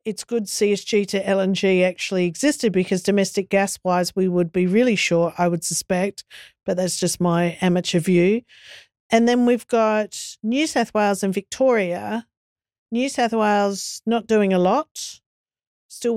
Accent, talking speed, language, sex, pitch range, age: Australian, 155 wpm, English, female, 190-240 Hz, 50-69